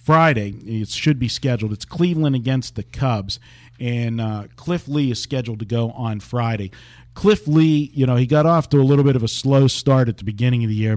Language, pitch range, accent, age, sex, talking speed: English, 110-130 Hz, American, 40-59, male, 225 wpm